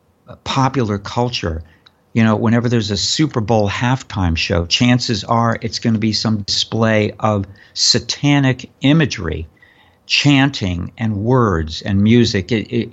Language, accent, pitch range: English, American, 100-125 Hz